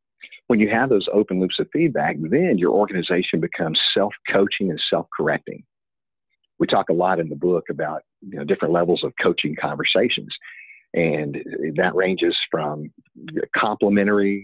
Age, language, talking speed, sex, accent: 50-69, English, 135 wpm, male, American